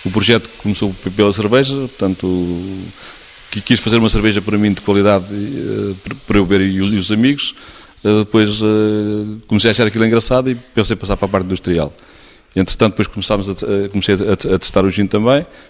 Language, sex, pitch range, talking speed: Portuguese, male, 100-115 Hz, 165 wpm